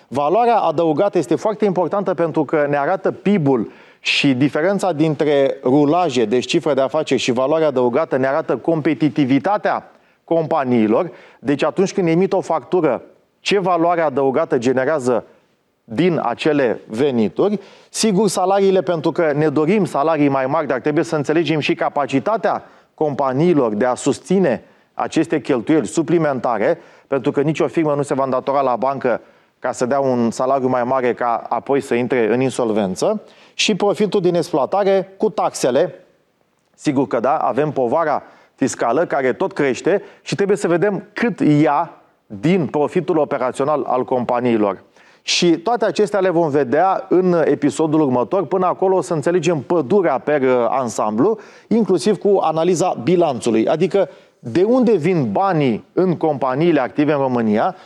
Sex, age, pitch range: male, 30-49, 135-185 Hz